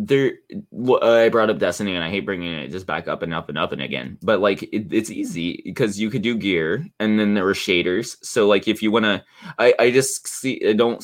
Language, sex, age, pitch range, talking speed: English, male, 20-39, 85-115 Hz, 245 wpm